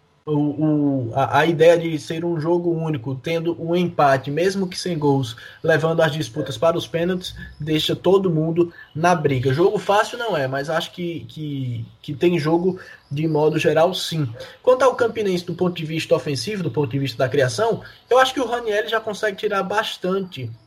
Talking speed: 190 wpm